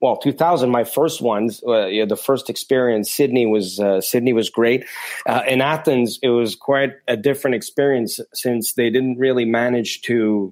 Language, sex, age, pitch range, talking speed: English, male, 30-49, 110-130 Hz, 175 wpm